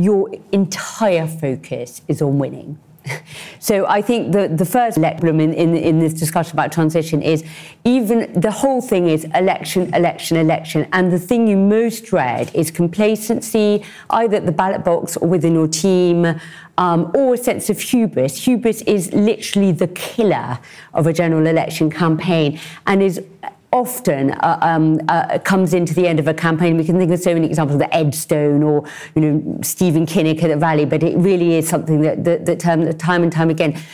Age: 50-69